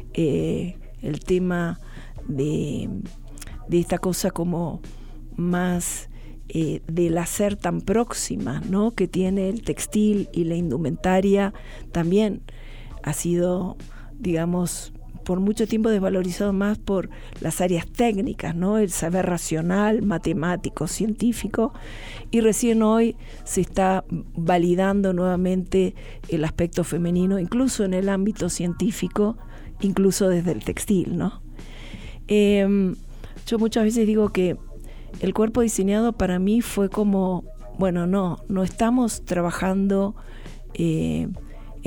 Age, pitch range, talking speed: 50-69, 170-205 Hz, 115 wpm